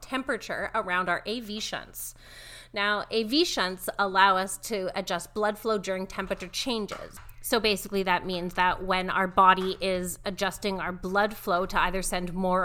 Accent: American